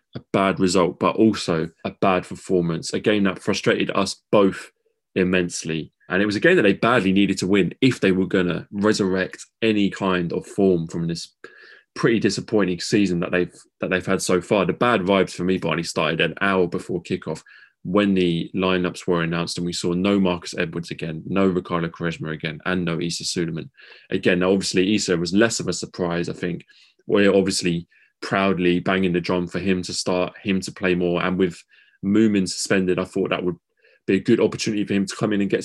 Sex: male